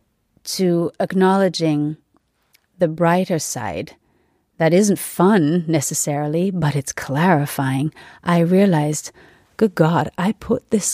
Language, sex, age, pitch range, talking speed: English, female, 30-49, 155-185 Hz, 105 wpm